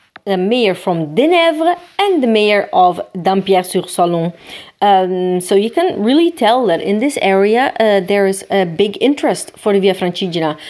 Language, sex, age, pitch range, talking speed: Italian, female, 30-49, 185-235 Hz, 165 wpm